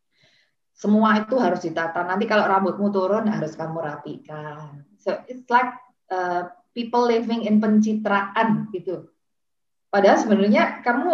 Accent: native